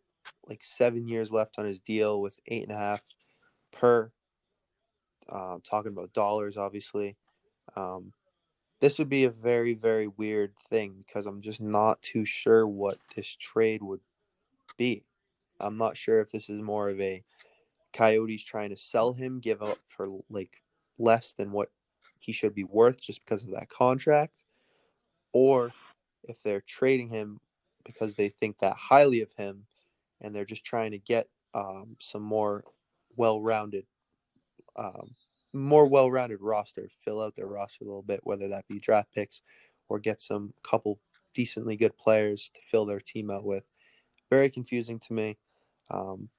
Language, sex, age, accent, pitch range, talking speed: English, male, 20-39, American, 105-120 Hz, 160 wpm